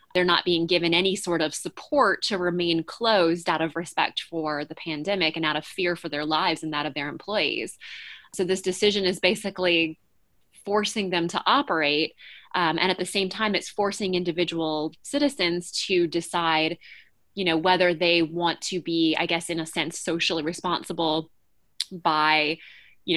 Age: 20-39